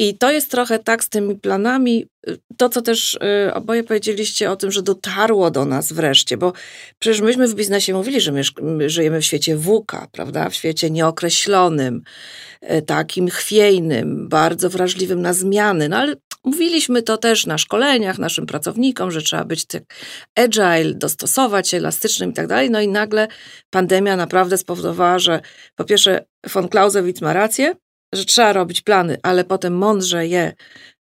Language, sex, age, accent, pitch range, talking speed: Polish, female, 40-59, native, 170-215 Hz, 160 wpm